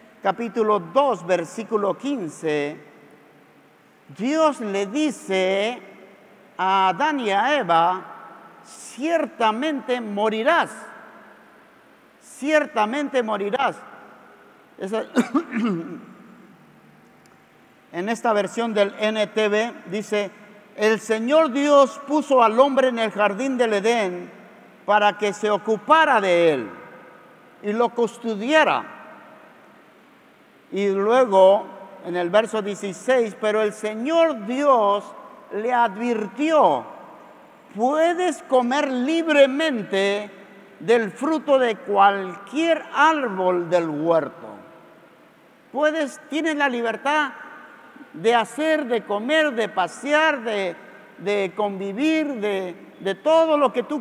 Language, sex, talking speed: Spanish, male, 90 wpm